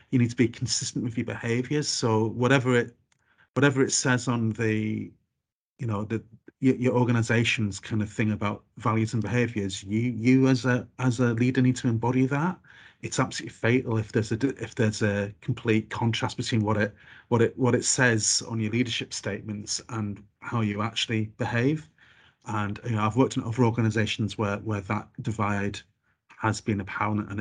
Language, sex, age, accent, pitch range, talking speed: English, male, 30-49, British, 110-130 Hz, 185 wpm